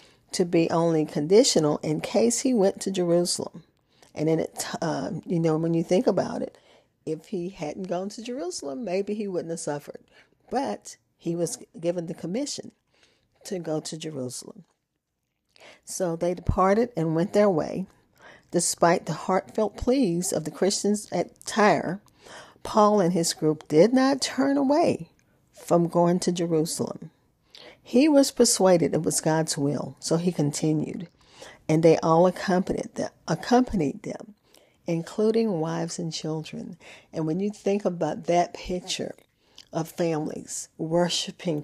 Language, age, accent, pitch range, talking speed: English, 40-59, American, 160-205 Hz, 145 wpm